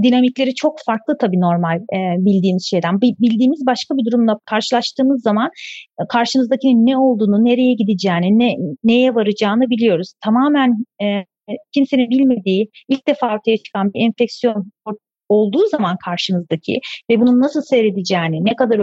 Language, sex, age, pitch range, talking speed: Turkish, female, 40-59, 200-255 Hz, 130 wpm